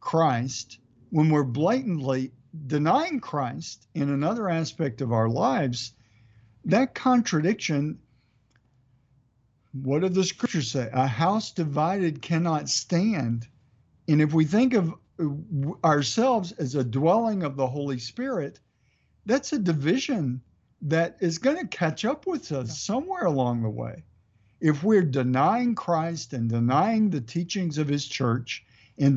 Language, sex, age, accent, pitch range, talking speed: English, male, 60-79, American, 125-170 Hz, 130 wpm